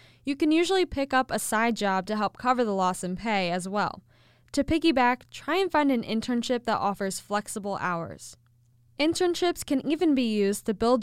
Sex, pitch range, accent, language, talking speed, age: female, 195-265 Hz, American, English, 190 wpm, 10-29